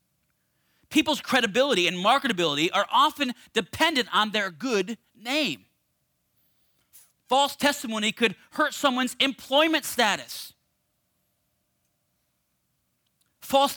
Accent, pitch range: American, 175-285 Hz